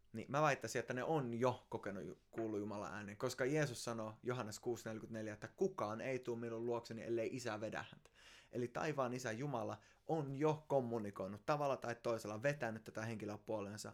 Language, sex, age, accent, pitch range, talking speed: Finnish, male, 20-39, native, 105-120 Hz, 170 wpm